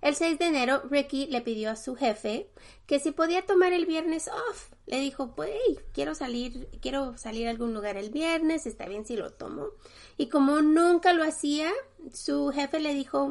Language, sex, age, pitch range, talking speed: Spanish, female, 30-49, 215-310 Hz, 200 wpm